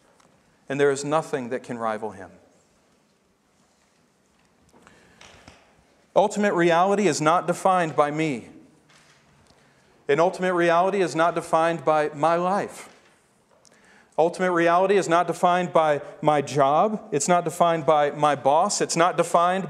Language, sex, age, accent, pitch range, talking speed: English, male, 40-59, American, 165-215 Hz, 125 wpm